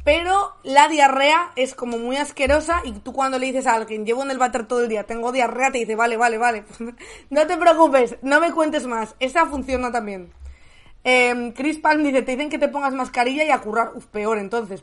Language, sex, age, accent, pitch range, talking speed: Spanish, female, 20-39, Spanish, 230-300 Hz, 220 wpm